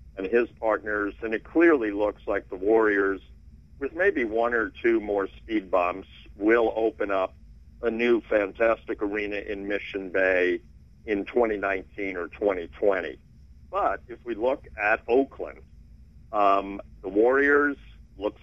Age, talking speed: 50-69, 135 wpm